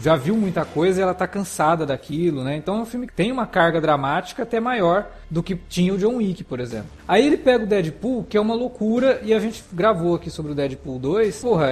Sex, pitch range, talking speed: male, 160-215 Hz, 245 wpm